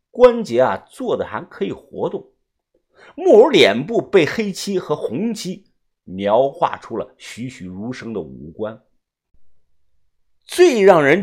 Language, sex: Chinese, male